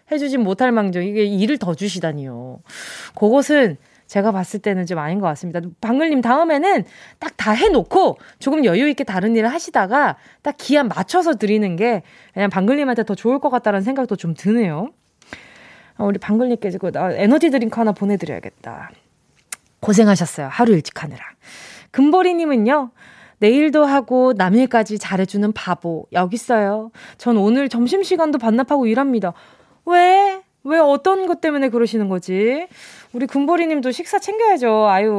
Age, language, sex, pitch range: 20-39, Korean, female, 200-285 Hz